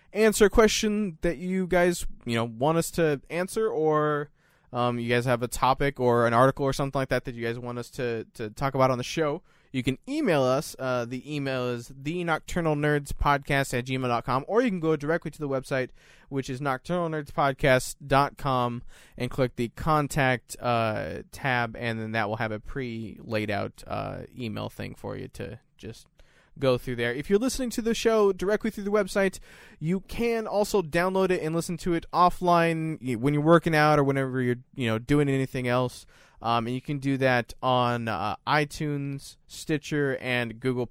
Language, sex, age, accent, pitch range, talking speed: English, male, 20-39, American, 120-155 Hz, 195 wpm